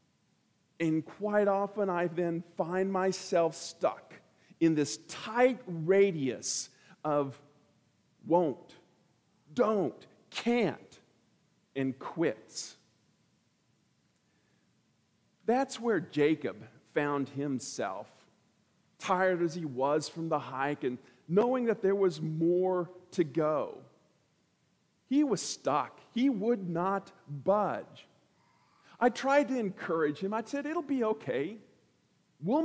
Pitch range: 160-220 Hz